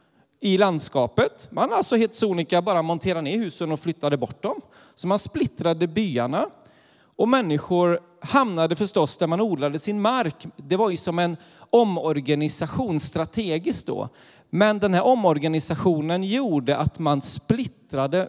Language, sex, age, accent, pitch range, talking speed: Swedish, male, 40-59, native, 145-185 Hz, 140 wpm